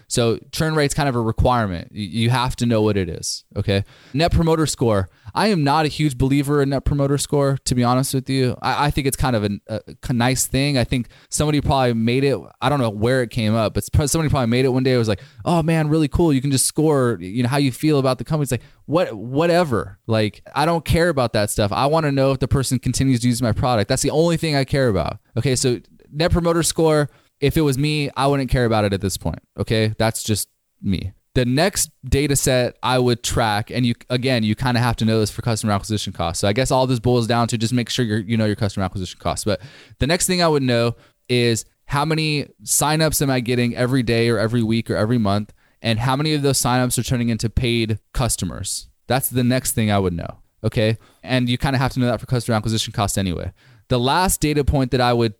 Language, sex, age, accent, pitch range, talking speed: English, male, 20-39, American, 110-140 Hz, 250 wpm